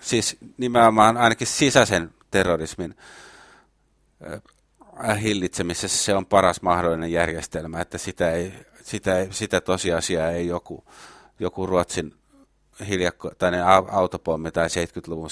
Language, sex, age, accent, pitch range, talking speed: Finnish, male, 30-49, native, 80-100 Hz, 100 wpm